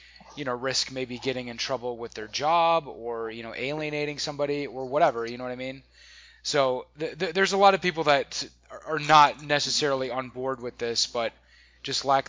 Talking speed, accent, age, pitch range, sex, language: 190 wpm, American, 20-39, 120-145 Hz, male, English